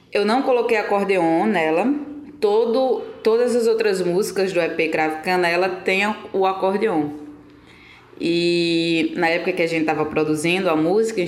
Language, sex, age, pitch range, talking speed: Portuguese, female, 20-39, 160-220 Hz, 150 wpm